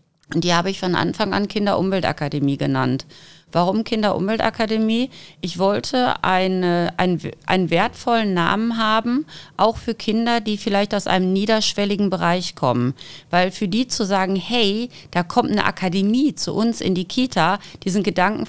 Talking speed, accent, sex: 150 wpm, German, female